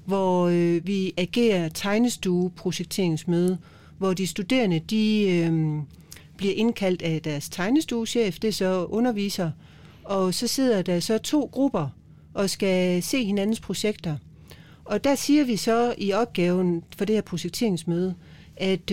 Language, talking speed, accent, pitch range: Danish, 135 wpm, native, 180-225 Hz